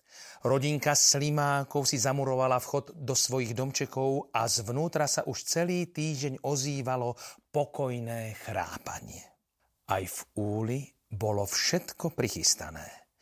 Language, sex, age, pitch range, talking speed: Slovak, male, 40-59, 115-155 Hz, 110 wpm